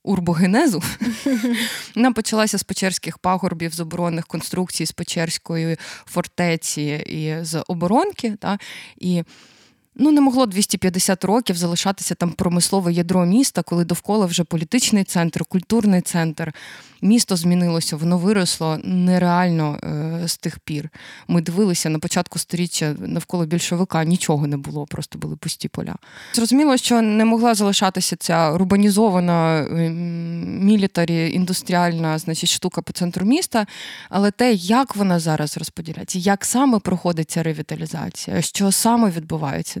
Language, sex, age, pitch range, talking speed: Ukrainian, female, 20-39, 165-205 Hz, 125 wpm